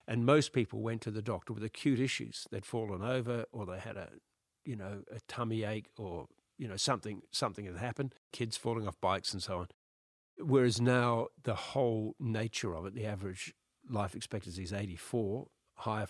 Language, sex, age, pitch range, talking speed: English, male, 50-69, 100-120 Hz, 185 wpm